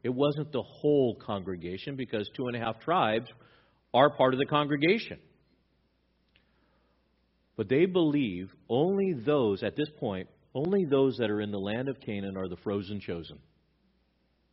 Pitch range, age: 95-130 Hz, 50-69